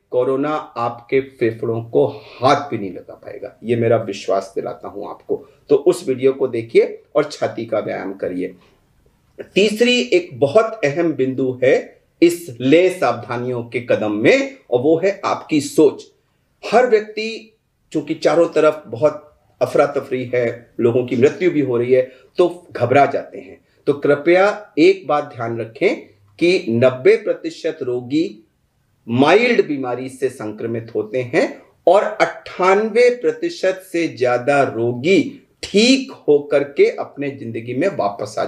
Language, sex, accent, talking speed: Hindi, male, native, 140 wpm